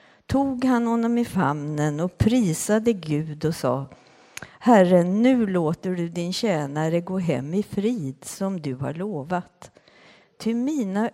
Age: 60-79